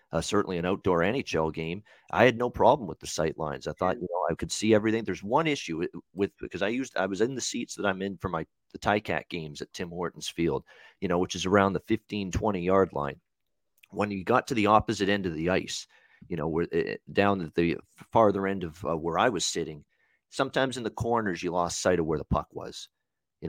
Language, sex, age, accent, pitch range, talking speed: English, male, 40-59, American, 85-105 Hz, 245 wpm